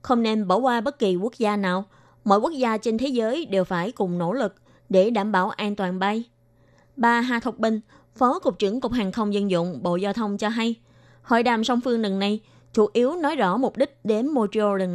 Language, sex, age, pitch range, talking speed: Vietnamese, female, 20-39, 195-245 Hz, 235 wpm